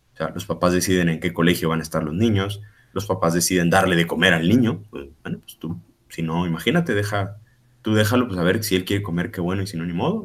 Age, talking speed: 30-49, 265 wpm